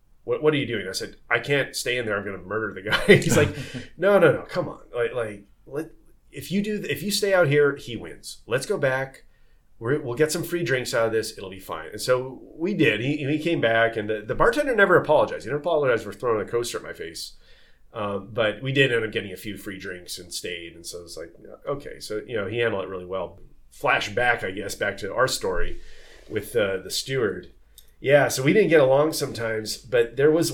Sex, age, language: male, 30-49, English